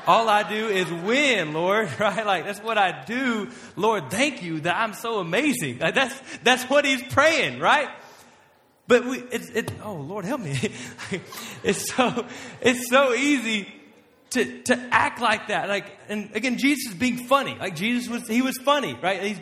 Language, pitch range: English, 165-230 Hz